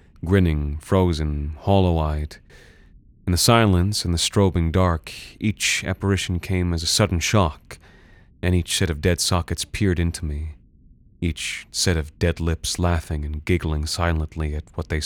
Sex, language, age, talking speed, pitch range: male, English, 30-49, 150 wpm, 80-100 Hz